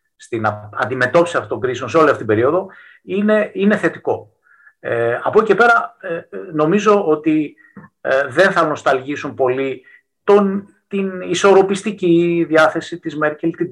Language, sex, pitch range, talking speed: Greek, male, 130-180 Hz, 135 wpm